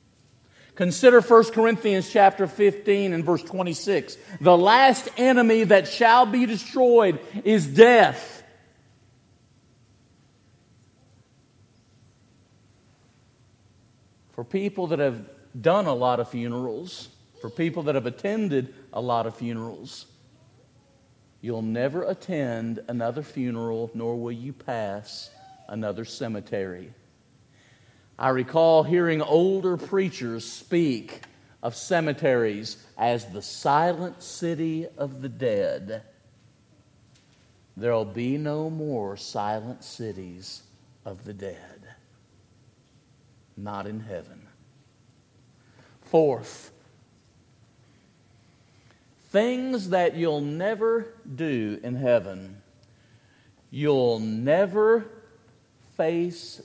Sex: male